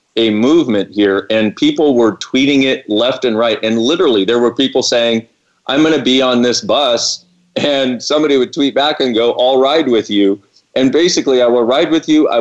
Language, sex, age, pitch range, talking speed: English, male, 40-59, 110-130 Hz, 205 wpm